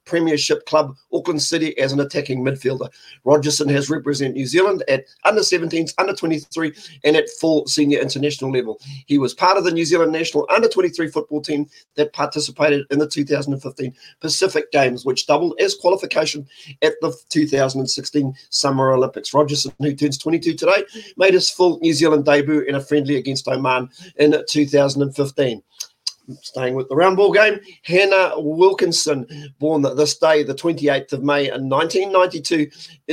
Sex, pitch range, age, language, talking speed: male, 140-170 Hz, 40-59, English, 155 wpm